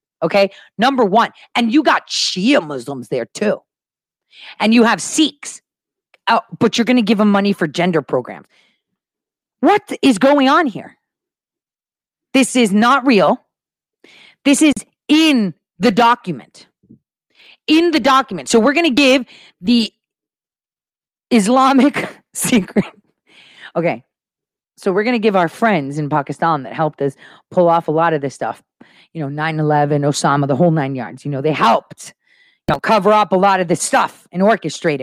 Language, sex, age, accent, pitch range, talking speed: English, female, 40-59, American, 170-255 Hz, 155 wpm